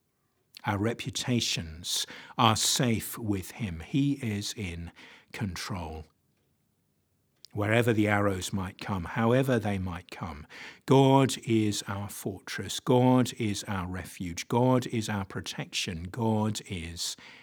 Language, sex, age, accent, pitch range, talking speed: English, male, 50-69, British, 95-120 Hz, 115 wpm